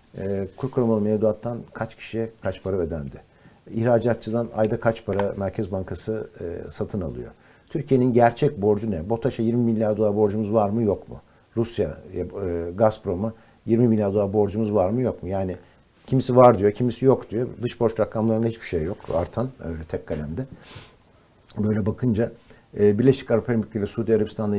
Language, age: Turkish, 60-79